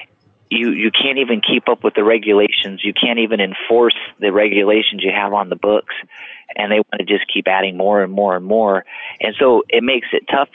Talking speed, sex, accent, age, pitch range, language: 215 wpm, male, American, 40-59, 100-120 Hz, English